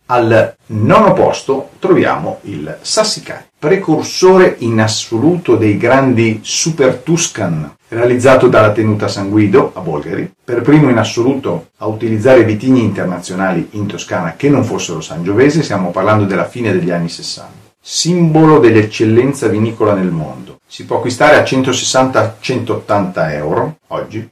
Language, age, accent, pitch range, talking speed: Italian, 40-59, native, 105-145 Hz, 130 wpm